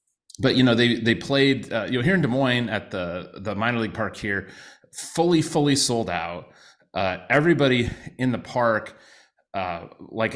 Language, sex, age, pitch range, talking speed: English, male, 30-49, 100-130 Hz, 180 wpm